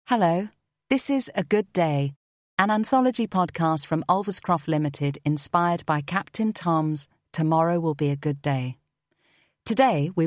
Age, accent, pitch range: 40-59, British, 145-180 Hz